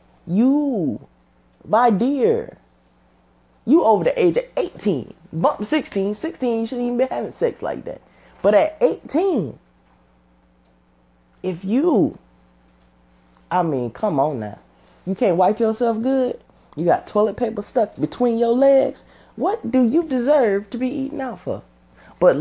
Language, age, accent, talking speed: English, 20-39, American, 140 wpm